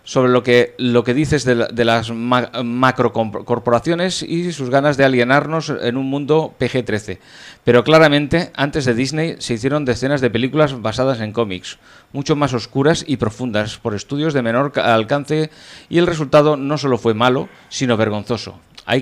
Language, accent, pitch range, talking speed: Spanish, Spanish, 115-145 Hz, 175 wpm